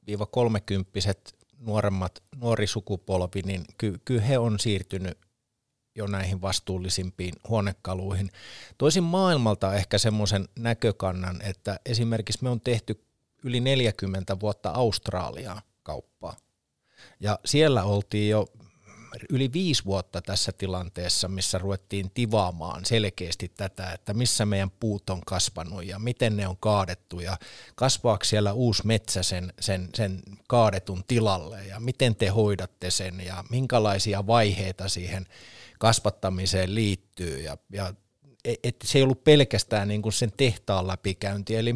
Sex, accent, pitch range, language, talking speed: male, native, 95-115 Hz, Finnish, 125 wpm